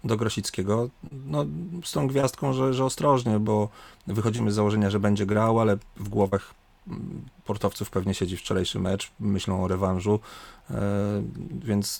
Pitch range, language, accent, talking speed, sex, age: 100-115 Hz, Polish, native, 140 wpm, male, 30-49